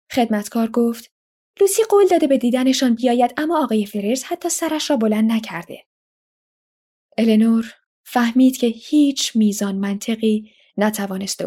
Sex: female